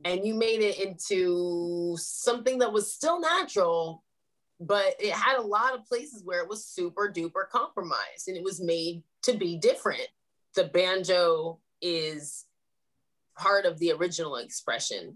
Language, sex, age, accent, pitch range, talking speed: English, female, 20-39, American, 160-200 Hz, 150 wpm